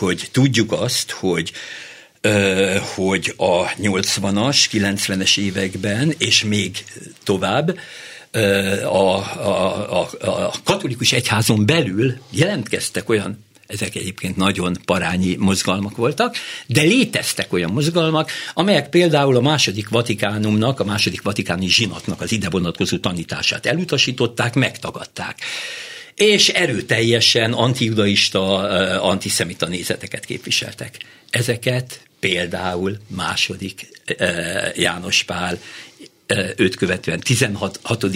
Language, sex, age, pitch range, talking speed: Hungarian, male, 60-79, 100-135 Hz, 95 wpm